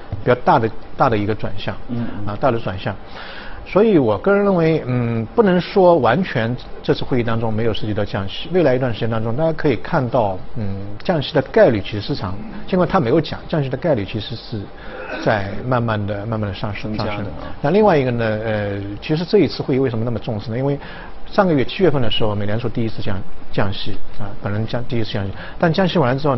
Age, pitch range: 50-69, 105-135 Hz